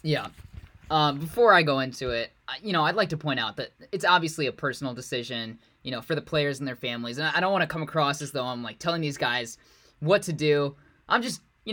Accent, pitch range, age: American, 140-180 Hz, 10-29